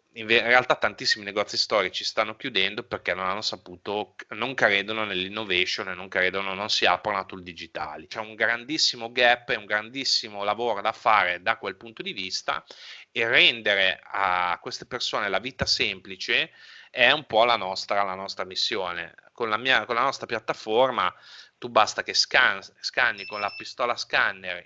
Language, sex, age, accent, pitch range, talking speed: Italian, male, 30-49, native, 95-115 Hz, 170 wpm